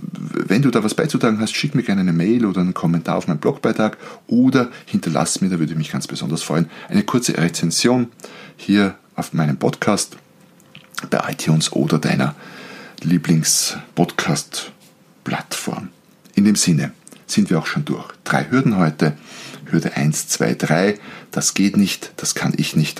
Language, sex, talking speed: German, male, 165 wpm